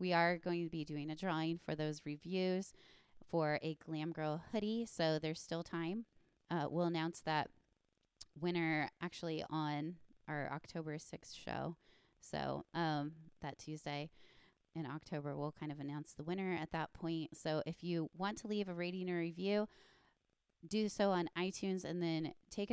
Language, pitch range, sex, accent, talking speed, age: English, 150-175 Hz, female, American, 165 wpm, 20-39